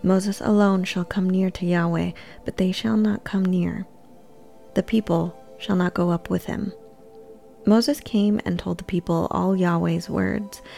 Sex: female